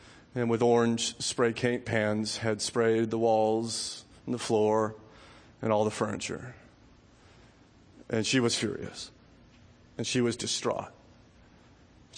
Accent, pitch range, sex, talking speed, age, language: American, 120-190 Hz, male, 125 wpm, 30-49, English